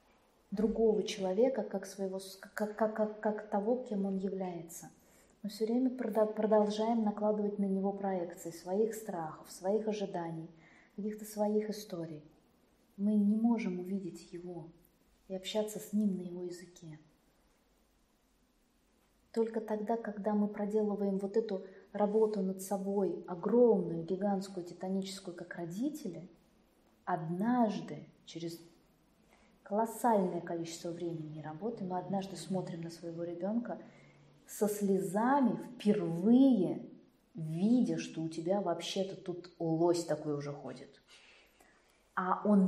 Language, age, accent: Russian, 20-39, native